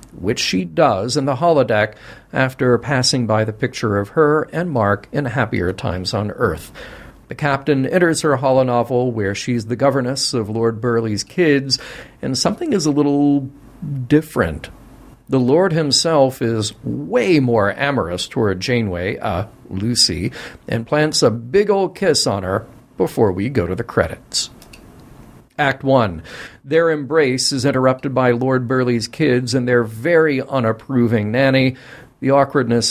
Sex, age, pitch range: male, 50-69, 115-145 Hz